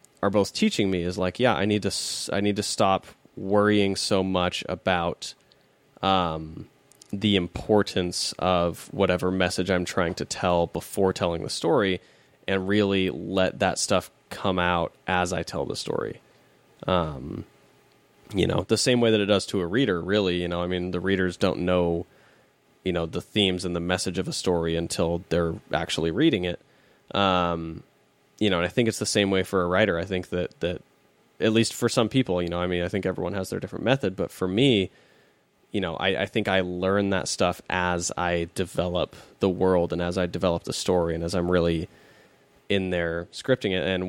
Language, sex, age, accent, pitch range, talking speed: English, male, 20-39, American, 90-105 Hz, 195 wpm